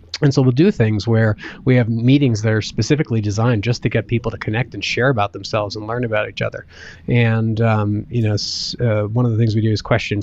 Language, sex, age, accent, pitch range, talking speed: English, male, 20-39, American, 105-125 Hz, 240 wpm